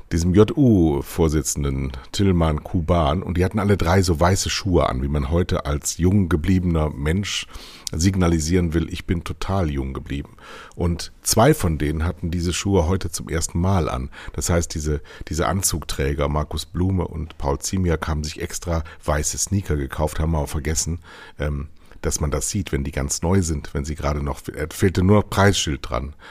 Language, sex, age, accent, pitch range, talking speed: German, male, 60-79, German, 80-95 Hz, 180 wpm